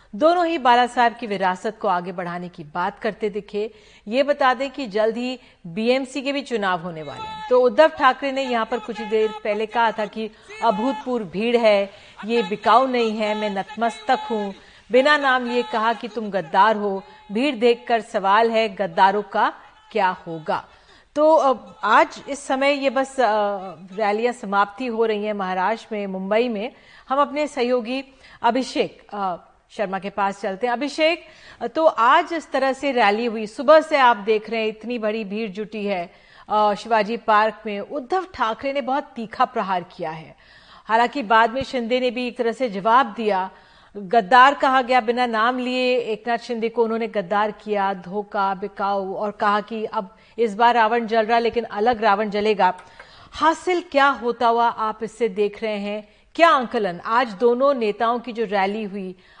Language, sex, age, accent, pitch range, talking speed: Hindi, female, 40-59, native, 210-250 Hz, 175 wpm